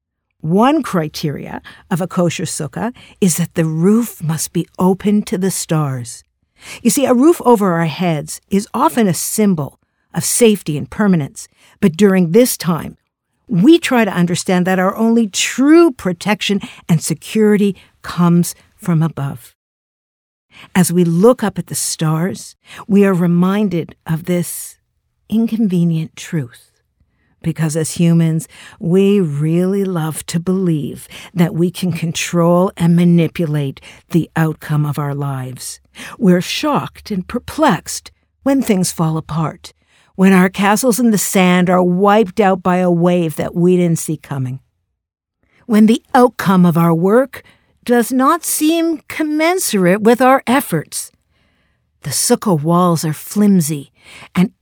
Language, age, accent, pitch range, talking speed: English, 50-69, American, 160-210 Hz, 140 wpm